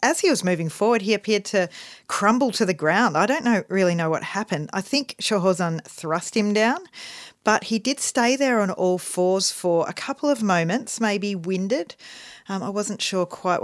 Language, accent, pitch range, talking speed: English, Australian, 170-225 Hz, 200 wpm